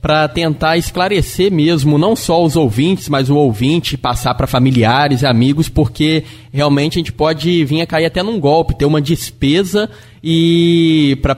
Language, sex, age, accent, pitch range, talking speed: Portuguese, male, 20-39, Brazilian, 130-160 Hz, 170 wpm